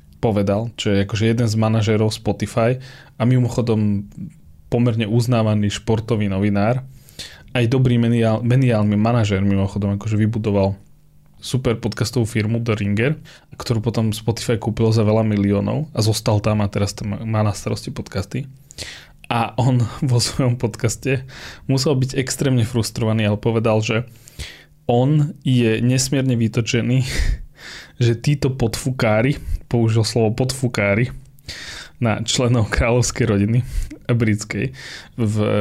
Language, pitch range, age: Slovak, 110-125 Hz, 20-39